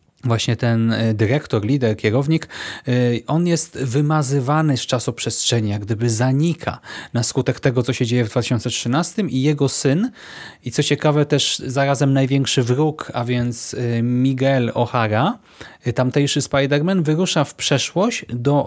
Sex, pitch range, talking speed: male, 120-145 Hz, 130 wpm